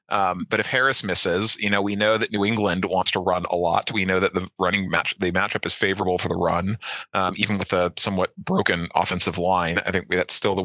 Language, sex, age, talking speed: English, male, 30-49, 240 wpm